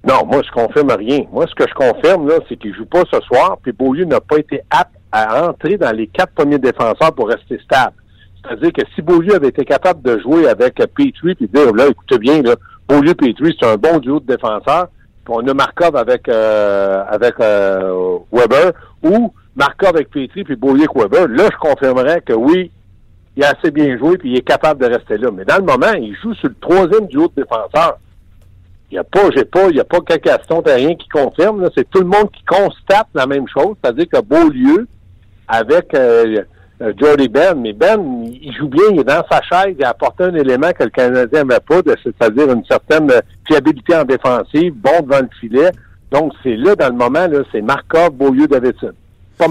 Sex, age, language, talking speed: male, 60-79, French, 215 wpm